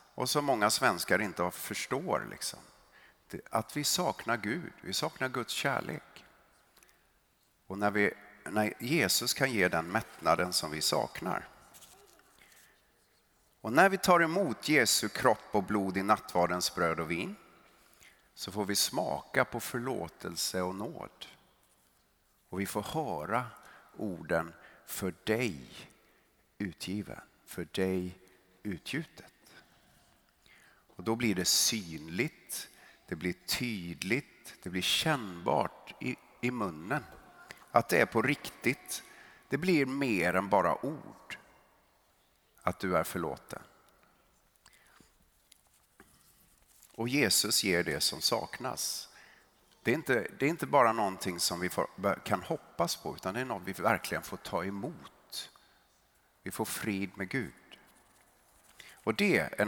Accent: native